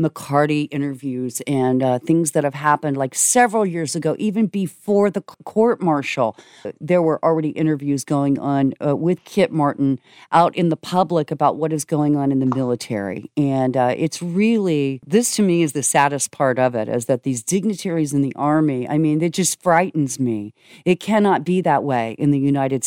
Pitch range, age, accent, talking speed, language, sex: 140-180 Hz, 40-59, American, 190 wpm, English, female